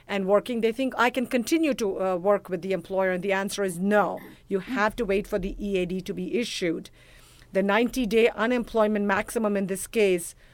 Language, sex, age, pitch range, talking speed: English, female, 50-69, 190-220 Hz, 205 wpm